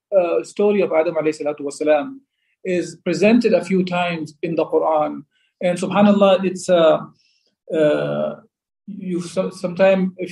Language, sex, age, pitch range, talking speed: English, male, 40-59, 155-185 Hz, 120 wpm